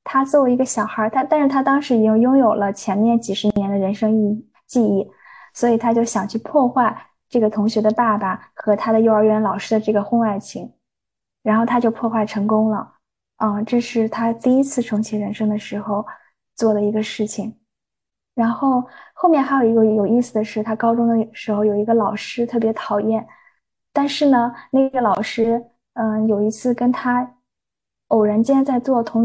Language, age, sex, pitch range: Chinese, 20-39, female, 215-245 Hz